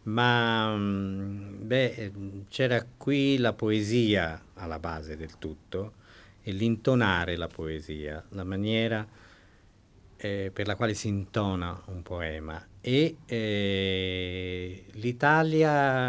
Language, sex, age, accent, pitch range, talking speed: Italian, male, 50-69, native, 95-125 Hz, 95 wpm